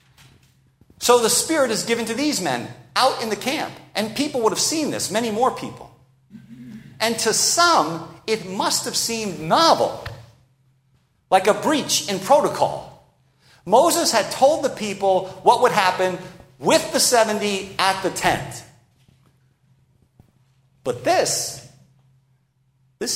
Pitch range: 130-195 Hz